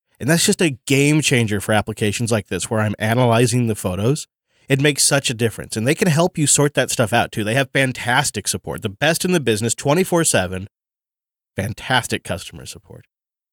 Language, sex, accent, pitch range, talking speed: English, male, American, 105-135 Hz, 190 wpm